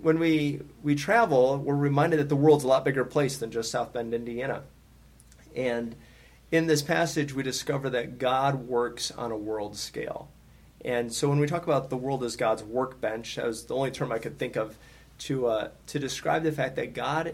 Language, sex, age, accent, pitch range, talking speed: English, male, 30-49, American, 120-145 Hz, 205 wpm